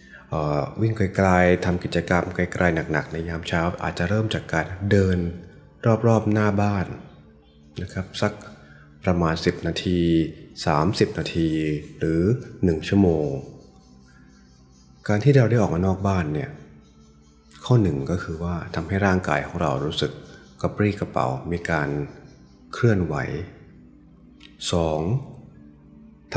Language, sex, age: Thai, male, 20-39